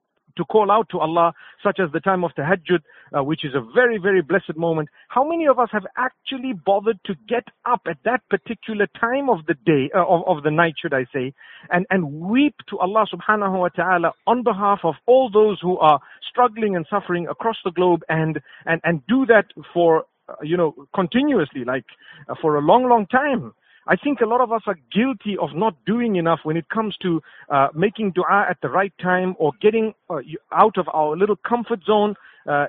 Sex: male